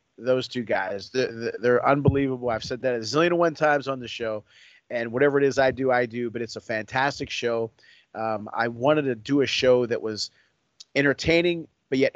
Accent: American